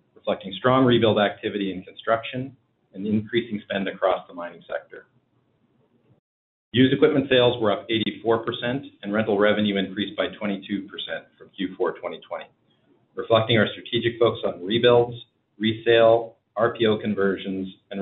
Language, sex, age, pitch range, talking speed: English, male, 40-59, 100-120 Hz, 125 wpm